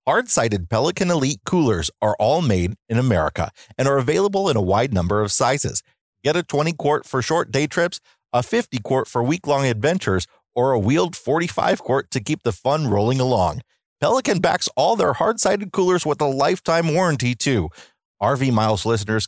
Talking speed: 170 wpm